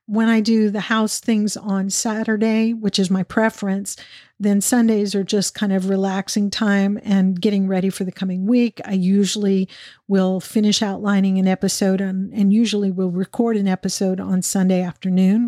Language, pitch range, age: English, 190-220 Hz, 50-69